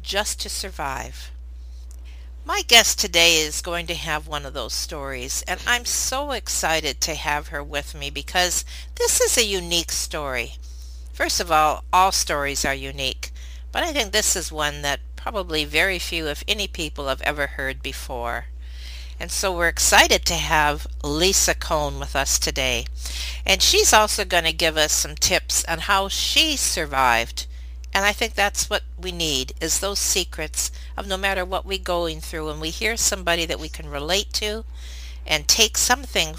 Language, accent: English, American